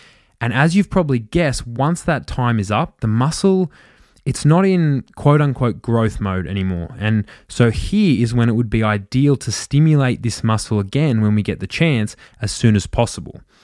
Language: English